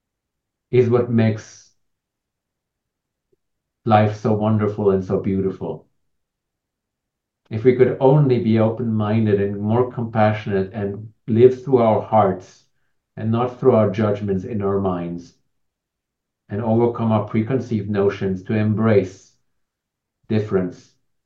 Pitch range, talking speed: 100-120 Hz, 110 wpm